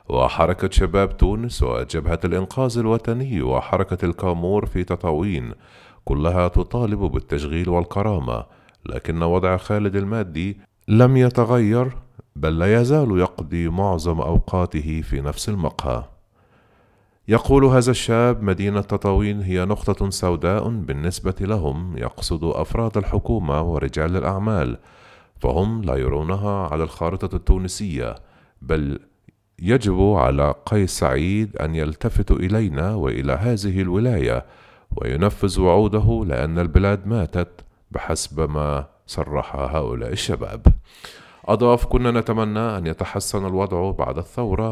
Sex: male